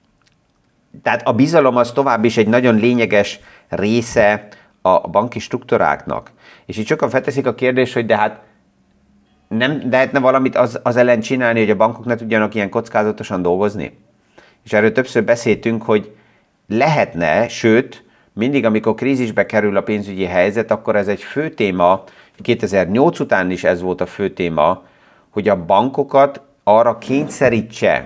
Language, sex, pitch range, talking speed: Hungarian, male, 105-125 Hz, 150 wpm